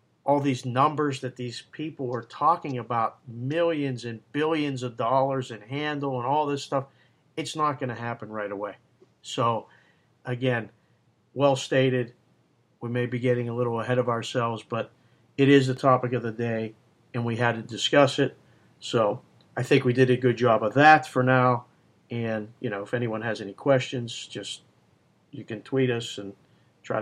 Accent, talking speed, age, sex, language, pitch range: American, 180 wpm, 50-69, male, English, 115-135 Hz